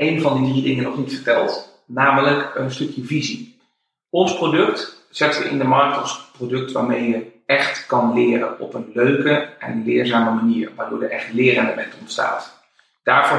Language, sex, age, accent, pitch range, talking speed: Dutch, male, 40-59, Dutch, 120-140 Hz, 175 wpm